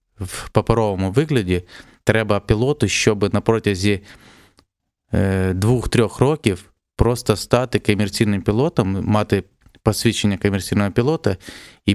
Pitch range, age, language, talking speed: 95-115 Hz, 20-39, Ukrainian, 90 wpm